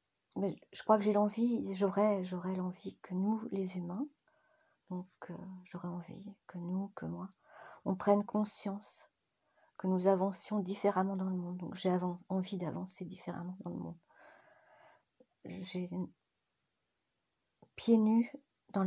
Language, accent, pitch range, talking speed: French, French, 185-215 Hz, 135 wpm